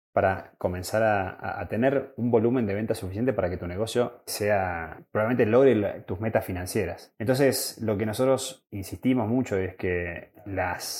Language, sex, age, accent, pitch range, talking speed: Spanish, male, 20-39, Argentinian, 100-125 Hz, 160 wpm